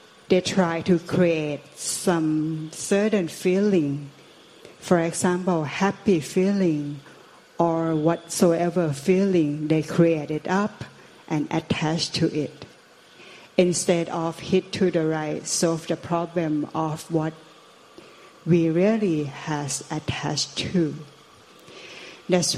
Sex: female